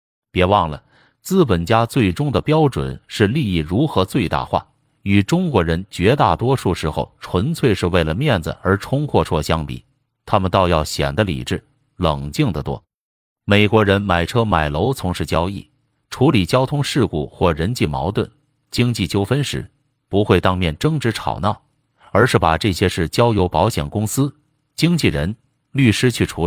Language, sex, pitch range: Chinese, male, 85-125 Hz